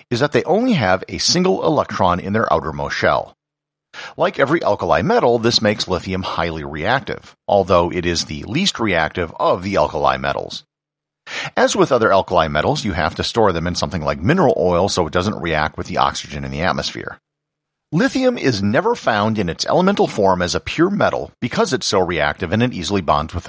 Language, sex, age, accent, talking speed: English, male, 50-69, American, 195 wpm